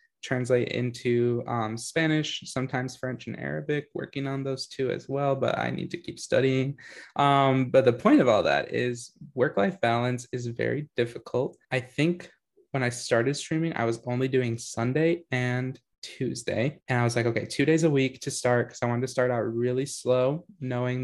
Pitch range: 120-140 Hz